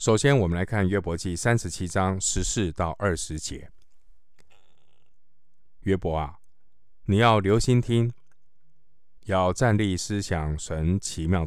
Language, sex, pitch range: Chinese, male, 85-105 Hz